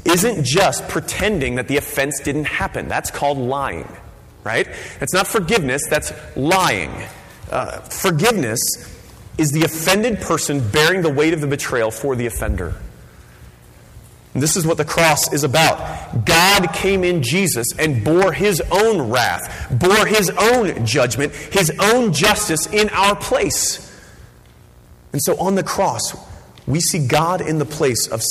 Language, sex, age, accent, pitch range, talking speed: English, male, 30-49, American, 115-175 Hz, 150 wpm